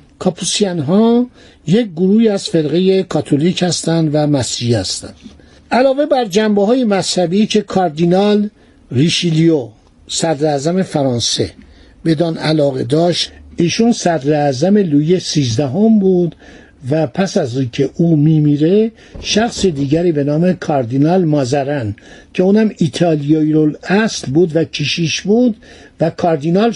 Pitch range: 150-195 Hz